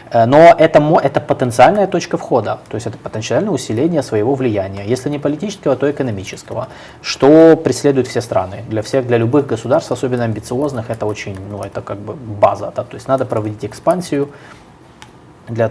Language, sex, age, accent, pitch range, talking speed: Russian, male, 20-39, native, 105-145 Hz, 165 wpm